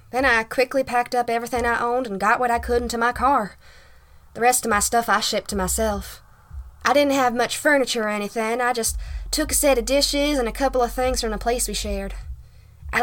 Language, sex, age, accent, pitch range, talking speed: English, female, 10-29, American, 200-255 Hz, 230 wpm